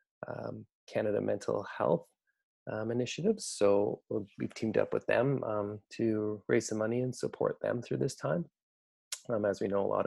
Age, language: 20-39, English